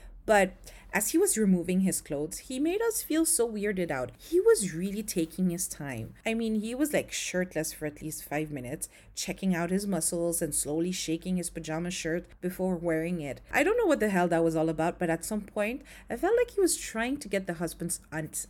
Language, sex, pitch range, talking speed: English, female, 160-230 Hz, 225 wpm